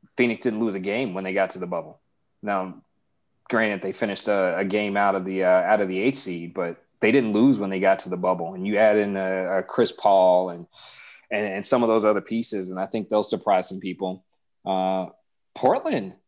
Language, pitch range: English, 100-120 Hz